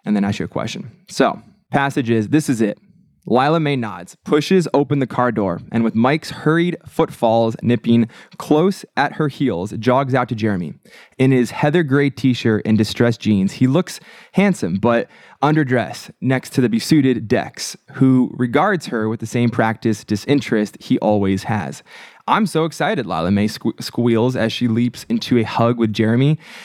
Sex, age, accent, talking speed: male, 20-39, American, 175 wpm